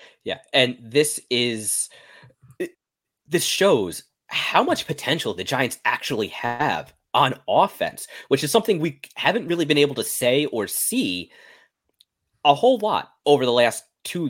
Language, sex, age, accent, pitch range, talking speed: English, male, 30-49, American, 120-165 Hz, 145 wpm